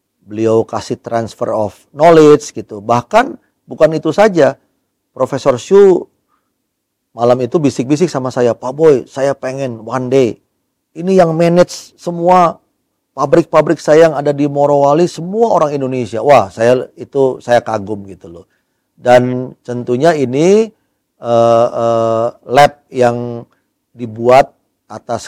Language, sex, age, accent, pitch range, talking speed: Indonesian, male, 40-59, native, 115-150 Hz, 125 wpm